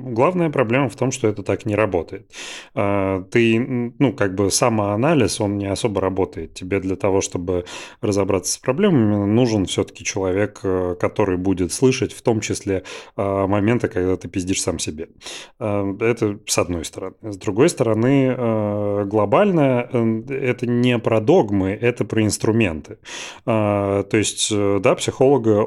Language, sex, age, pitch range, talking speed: Russian, male, 30-49, 95-115 Hz, 140 wpm